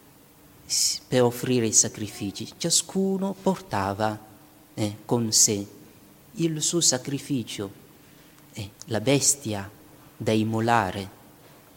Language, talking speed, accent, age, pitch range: Italian, 85 wpm, native, 40-59, 110-145 Hz